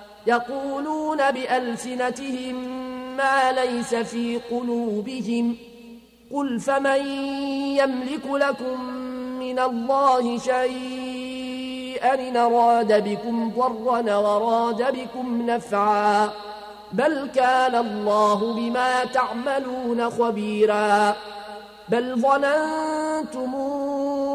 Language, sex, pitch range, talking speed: Arabic, male, 225-260 Hz, 65 wpm